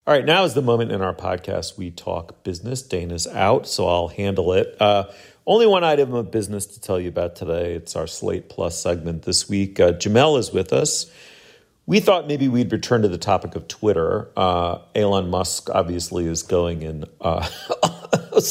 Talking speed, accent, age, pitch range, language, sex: 190 wpm, American, 40-59, 90-115 Hz, English, male